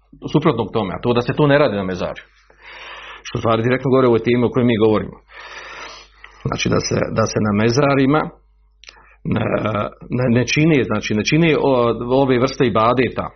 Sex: male